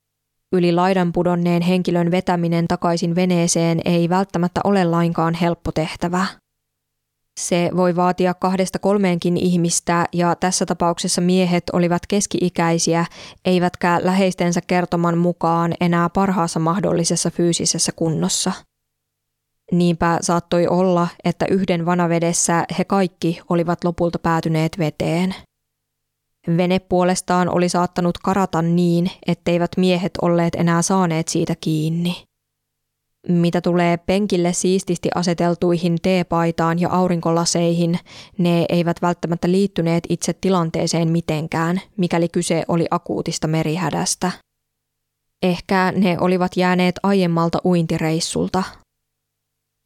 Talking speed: 100 wpm